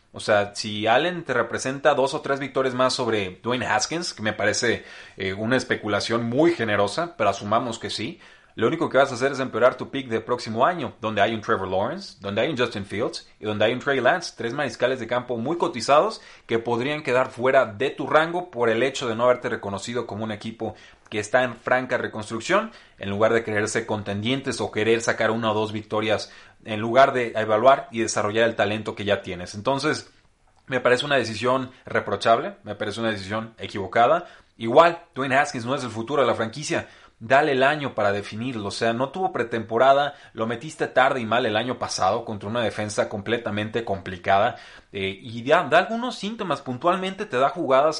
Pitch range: 110-135 Hz